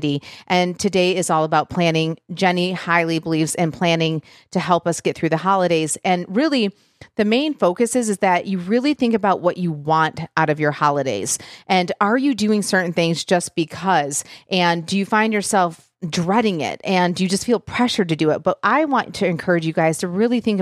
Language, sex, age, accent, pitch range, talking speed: English, female, 40-59, American, 160-210 Hz, 205 wpm